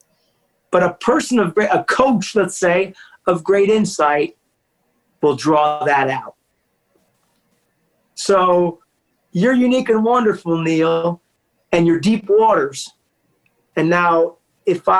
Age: 40-59